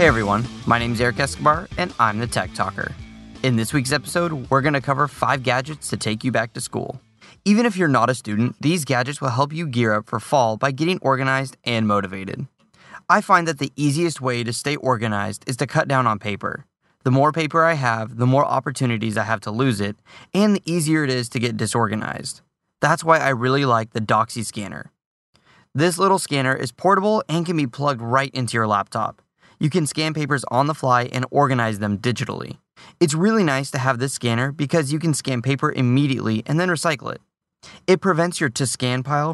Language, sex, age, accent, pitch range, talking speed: English, male, 20-39, American, 120-160 Hz, 210 wpm